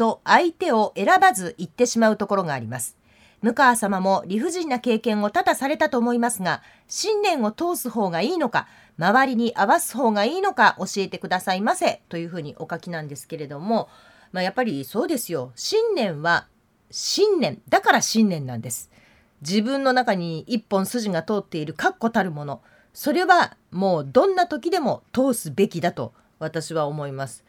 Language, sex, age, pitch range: Japanese, female, 40-59, 165-260 Hz